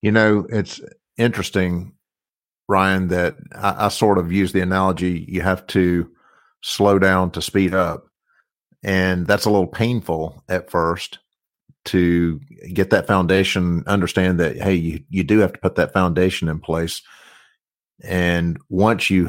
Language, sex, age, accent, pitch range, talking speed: English, male, 50-69, American, 85-105 Hz, 150 wpm